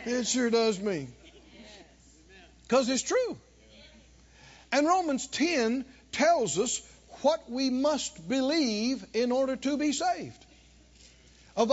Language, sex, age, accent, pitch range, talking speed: English, male, 50-69, American, 225-280 Hz, 115 wpm